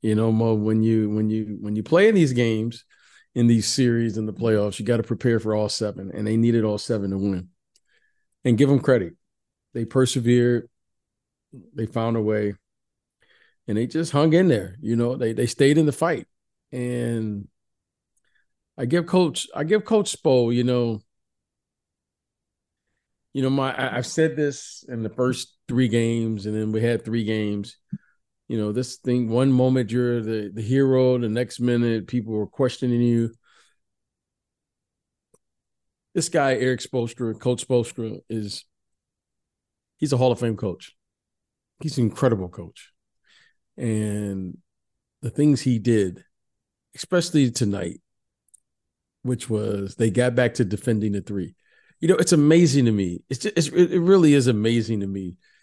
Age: 40-59